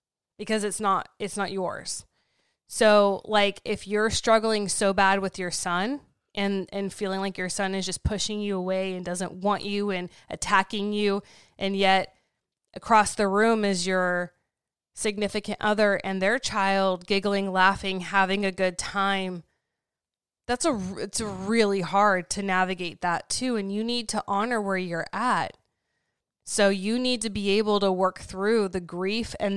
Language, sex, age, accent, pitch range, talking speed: English, female, 20-39, American, 185-210 Hz, 165 wpm